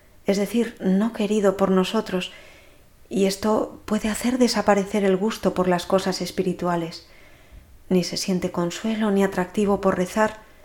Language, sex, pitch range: Spanish, female, 180-215 Hz